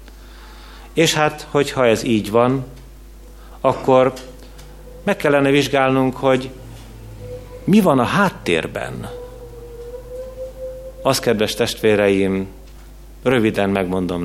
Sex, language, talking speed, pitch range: male, Hungarian, 85 wpm, 95-130 Hz